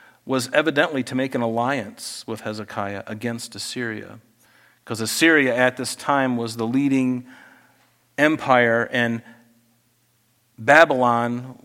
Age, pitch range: 40-59, 120-140 Hz